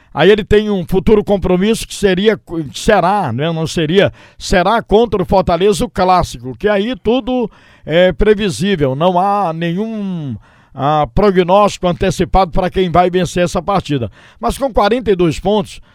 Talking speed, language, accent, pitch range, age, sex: 145 wpm, Portuguese, Brazilian, 165-205 Hz, 60-79, male